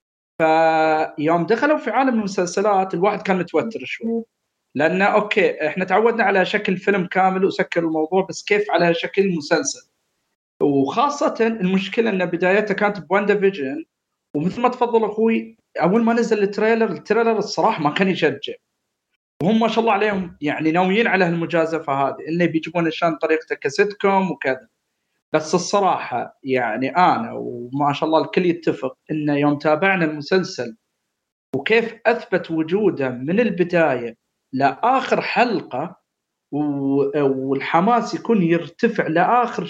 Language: Arabic